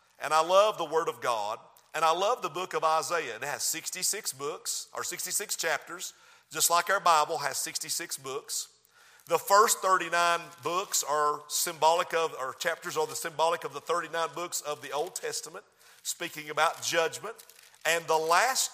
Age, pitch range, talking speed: 50-69, 165-230 Hz, 175 wpm